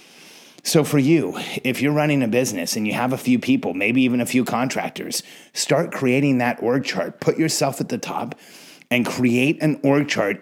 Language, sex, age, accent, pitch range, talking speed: English, male, 30-49, American, 125-155 Hz, 195 wpm